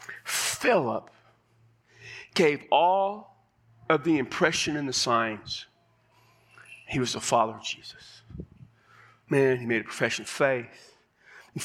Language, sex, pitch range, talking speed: English, male, 120-195 Hz, 120 wpm